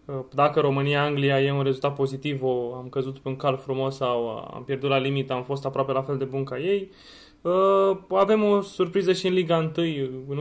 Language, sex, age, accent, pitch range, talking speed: Romanian, male, 20-39, native, 135-165 Hz, 200 wpm